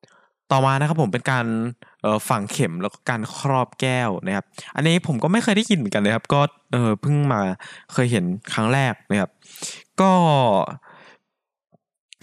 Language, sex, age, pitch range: Thai, male, 20-39, 110-155 Hz